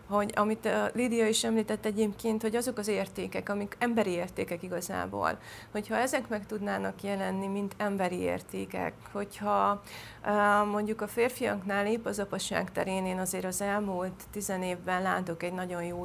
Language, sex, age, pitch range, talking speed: Hungarian, female, 30-49, 175-205 Hz, 150 wpm